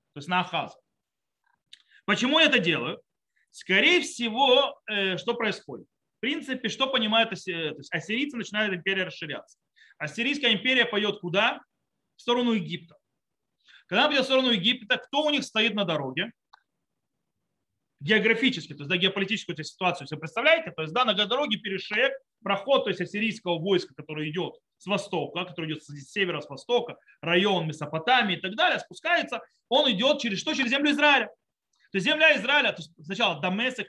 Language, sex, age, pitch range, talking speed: Russian, male, 30-49, 180-255 Hz, 165 wpm